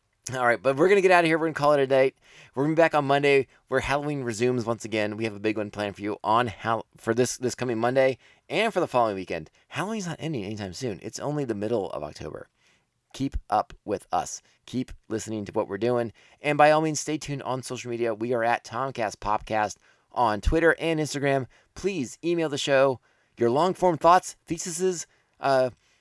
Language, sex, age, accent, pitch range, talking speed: English, male, 20-39, American, 110-150 Hz, 225 wpm